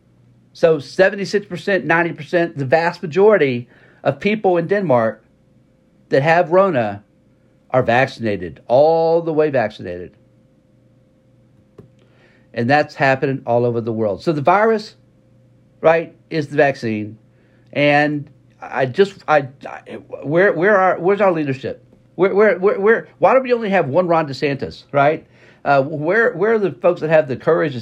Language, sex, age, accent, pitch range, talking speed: English, male, 50-69, American, 130-170 Hz, 155 wpm